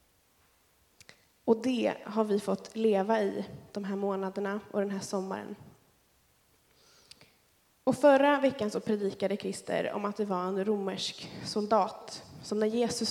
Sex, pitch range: female, 200-245 Hz